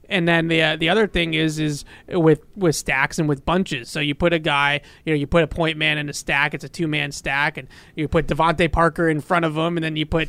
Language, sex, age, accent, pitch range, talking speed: English, male, 30-49, American, 145-165 Hz, 275 wpm